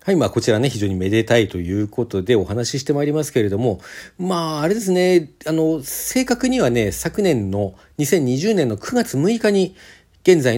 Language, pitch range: Japanese, 105-170 Hz